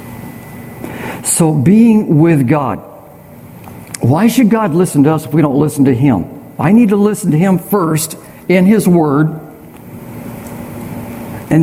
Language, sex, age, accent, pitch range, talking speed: English, male, 60-79, American, 130-170 Hz, 140 wpm